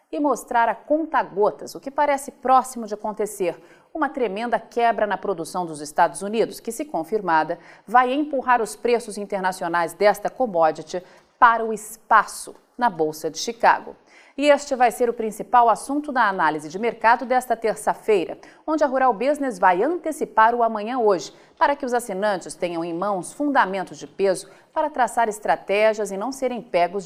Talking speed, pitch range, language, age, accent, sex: 165 wpm, 190-250 Hz, Portuguese, 40-59, Brazilian, female